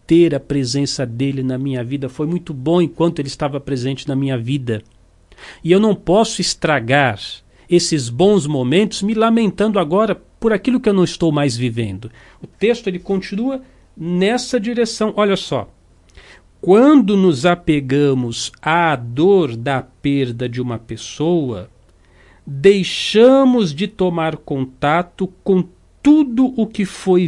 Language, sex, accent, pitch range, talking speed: Portuguese, male, Brazilian, 140-195 Hz, 135 wpm